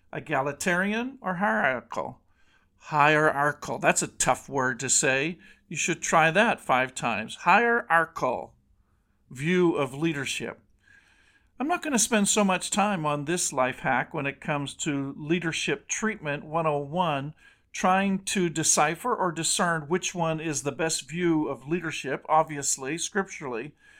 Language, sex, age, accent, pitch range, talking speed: English, male, 50-69, American, 140-175 Hz, 135 wpm